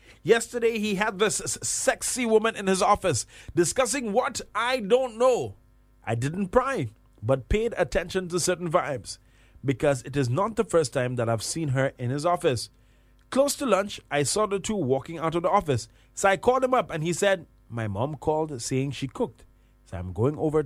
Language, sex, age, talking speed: English, male, 30-49, 195 wpm